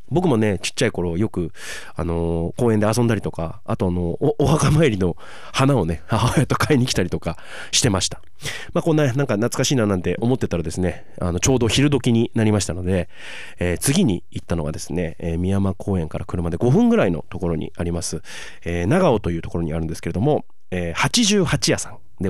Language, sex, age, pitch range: Japanese, male, 30-49, 90-125 Hz